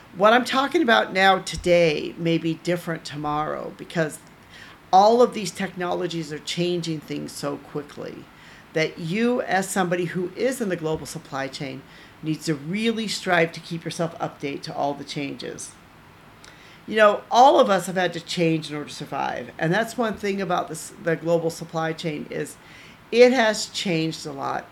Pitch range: 160-200 Hz